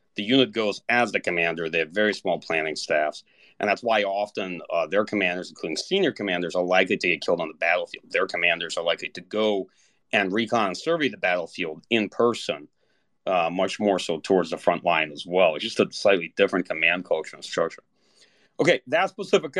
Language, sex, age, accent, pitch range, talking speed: English, male, 40-59, American, 105-145 Hz, 200 wpm